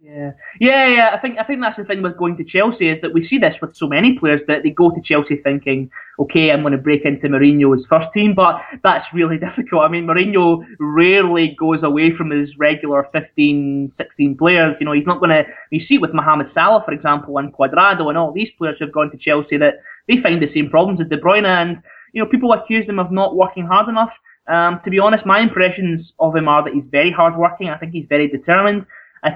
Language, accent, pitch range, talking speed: English, British, 145-175 Hz, 240 wpm